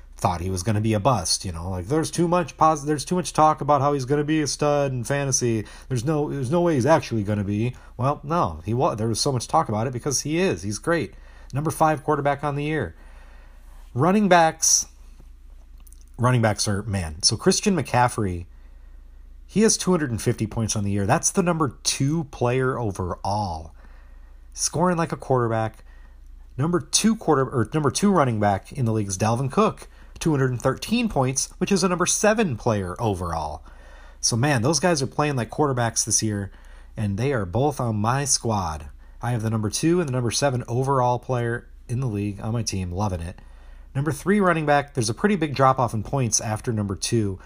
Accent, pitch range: American, 95-145 Hz